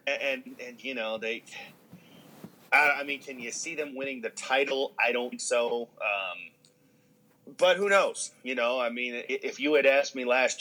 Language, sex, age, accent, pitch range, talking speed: English, male, 30-49, American, 105-135 Hz, 190 wpm